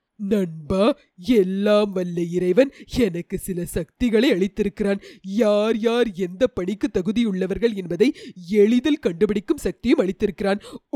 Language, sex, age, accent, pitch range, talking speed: Tamil, female, 30-49, native, 195-245 Hz, 100 wpm